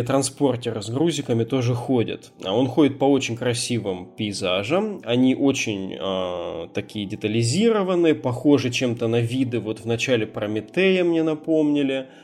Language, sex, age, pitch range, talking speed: Russian, male, 20-39, 110-140 Hz, 125 wpm